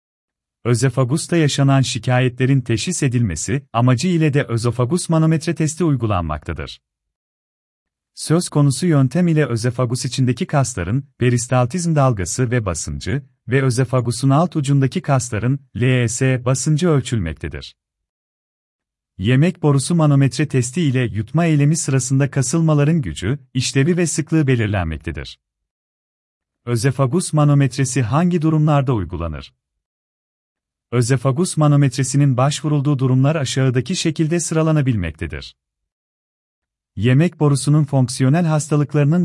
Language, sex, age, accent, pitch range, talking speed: Turkish, male, 40-59, native, 105-150 Hz, 95 wpm